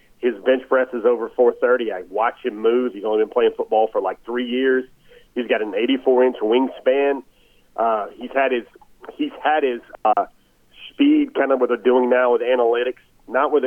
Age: 40-59